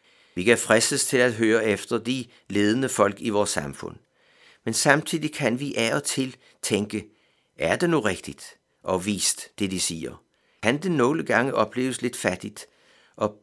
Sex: male